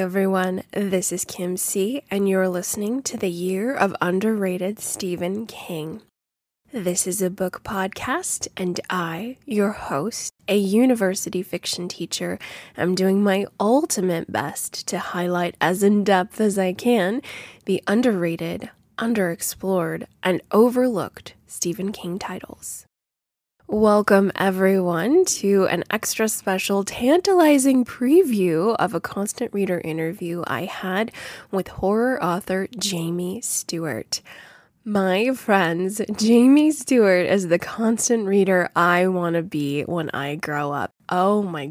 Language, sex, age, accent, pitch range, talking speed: English, female, 20-39, American, 175-215 Hz, 125 wpm